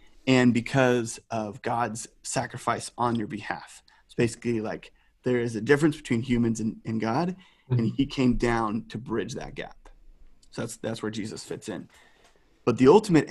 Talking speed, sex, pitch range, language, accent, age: 170 wpm, male, 115-135 Hz, English, American, 30-49